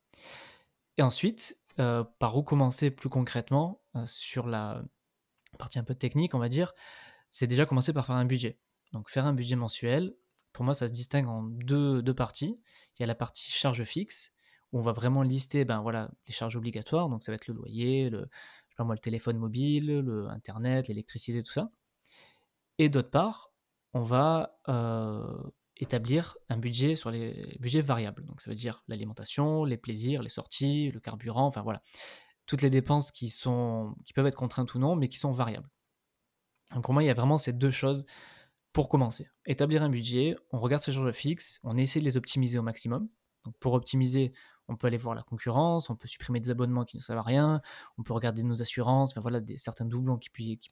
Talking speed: 200 wpm